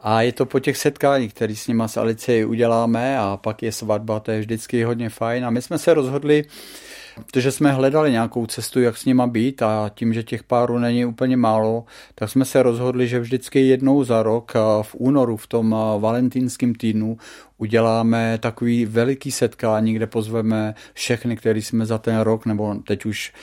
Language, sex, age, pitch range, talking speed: Czech, male, 40-59, 110-125 Hz, 185 wpm